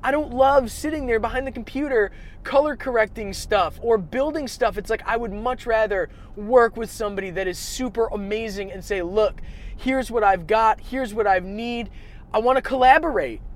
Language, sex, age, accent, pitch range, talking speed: English, male, 20-39, American, 210-295 Hz, 180 wpm